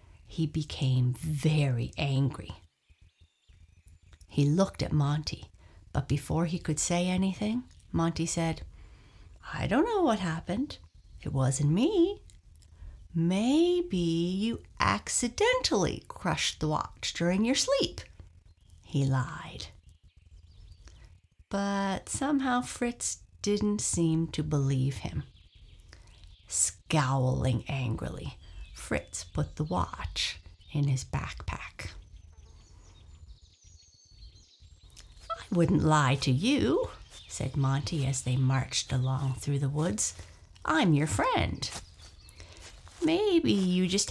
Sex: female